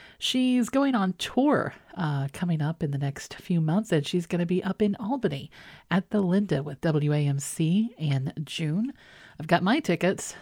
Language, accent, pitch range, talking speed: English, American, 145-205 Hz, 180 wpm